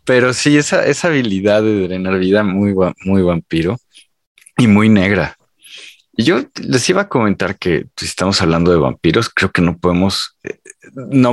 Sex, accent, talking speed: male, Mexican, 165 wpm